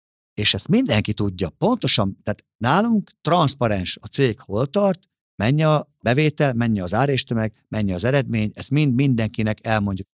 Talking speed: 150 wpm